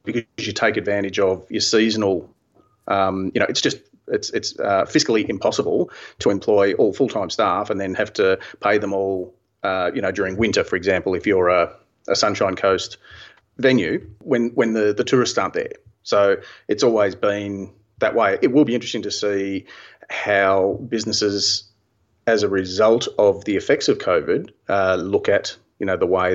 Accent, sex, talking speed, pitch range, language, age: Australian, male, 180 wpm, 100-145 Hz, English, 30-49